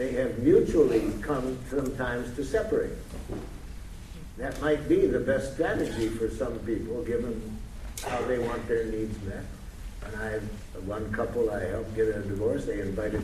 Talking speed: 155 wpm